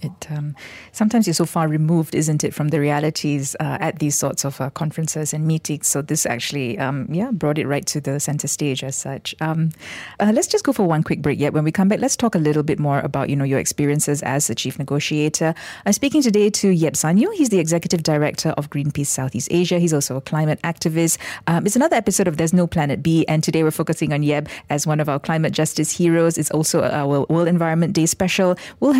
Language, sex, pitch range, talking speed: English, female, 150-195 Hz, 235 wpm